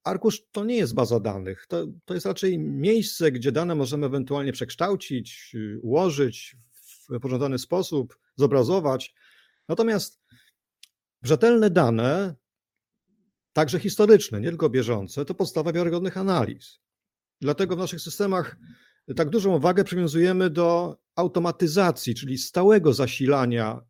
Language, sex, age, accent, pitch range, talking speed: Polish, male, 50-69, native, 125-175 Hz, 115 wpm